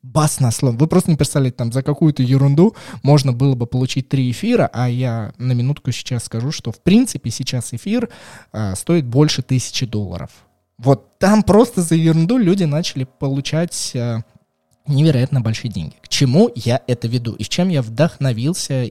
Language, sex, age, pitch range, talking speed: Russian, male, 20-39, 120-165 Hz, 170 wpm